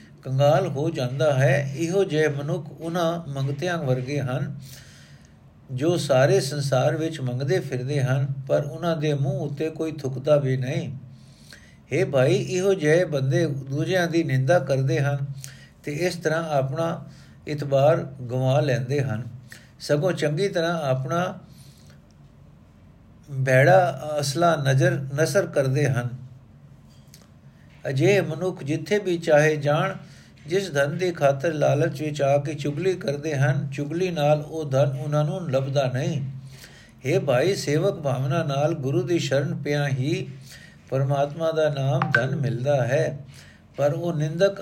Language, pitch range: Punjabi, 135-165 Hz